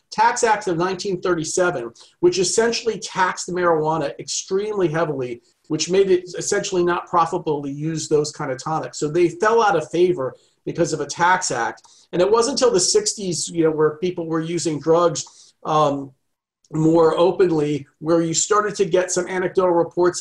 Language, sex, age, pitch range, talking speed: English, male, 40-59, 160-185 Hz, 165 wpm